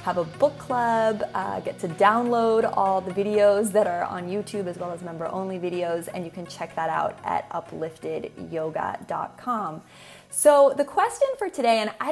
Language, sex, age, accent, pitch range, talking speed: English, female, 20-39, American, 175-225 Hz, 175 wpm